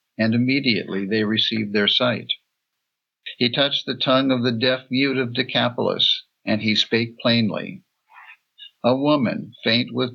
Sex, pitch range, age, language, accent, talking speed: male, 110-130 Hz, 60-79, English, American, 140 wpm